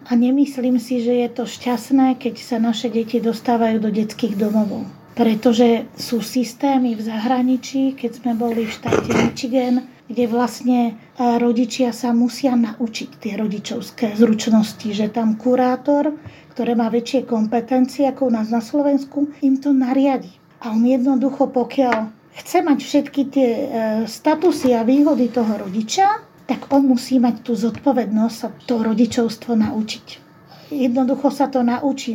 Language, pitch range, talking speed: Slovak, 230-265 Hz, 145 wpm